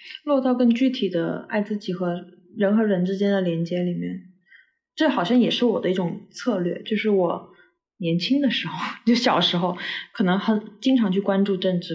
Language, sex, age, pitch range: Chinese, female, 20-39, 180-225 Hz